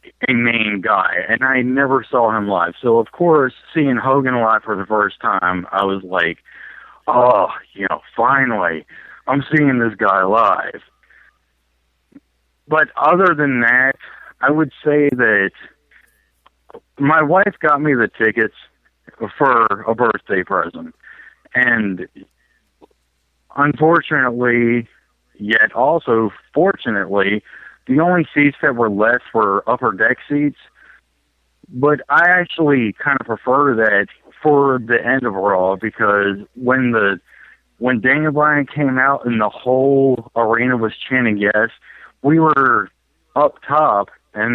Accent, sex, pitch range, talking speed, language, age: American, male, 105-140 Hz, 130 wpm, English, 50-69